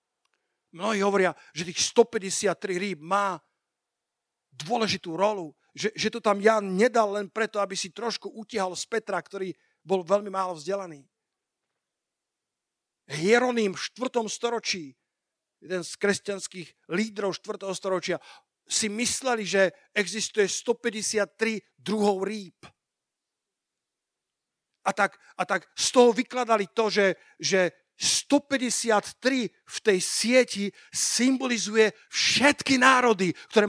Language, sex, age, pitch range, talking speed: Slovak, male, 50-69, 185-235 Hz, 110 wpm